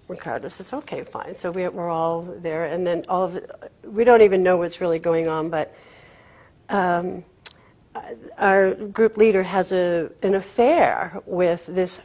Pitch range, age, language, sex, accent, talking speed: 170-200 Hz, 50-69, English, female, American, 165 wpm